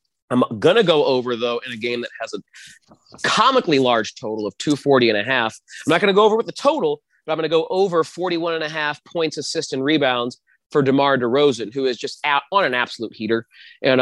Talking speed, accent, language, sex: 240 wpm, American, English, male